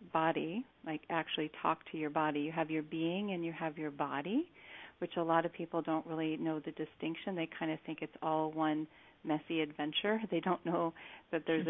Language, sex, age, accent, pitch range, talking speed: English, female, 40-59, American, 155-170 Hz, 205 wpm